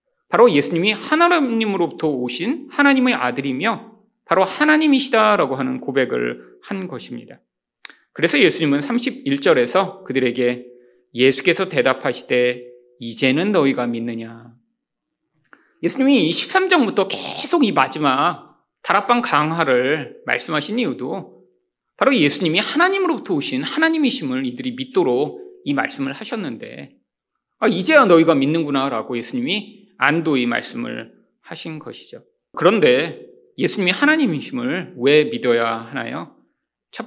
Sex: male